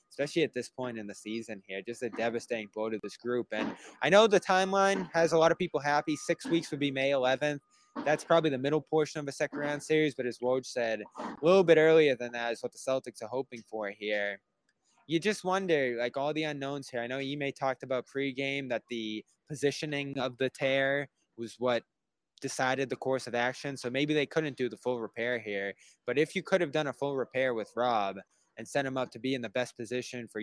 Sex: male